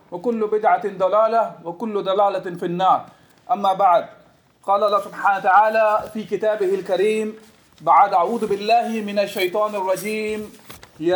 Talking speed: 125 wpm